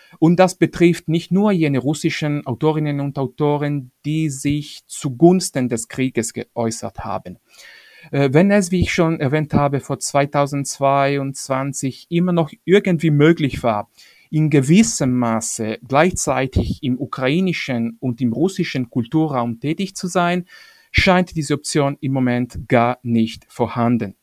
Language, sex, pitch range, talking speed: English, male, 120-160 Hz, 130 wpm